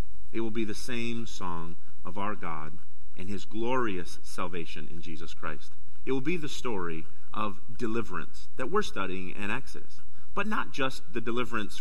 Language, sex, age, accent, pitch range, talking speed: English, male, 40-59, American, 90-145 Hz, 170 wpm